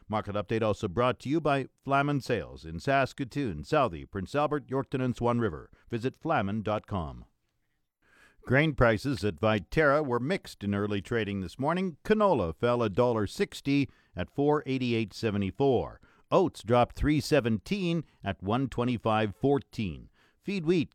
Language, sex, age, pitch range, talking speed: English, male, 50-69, 105-145 Hz, 150 wpm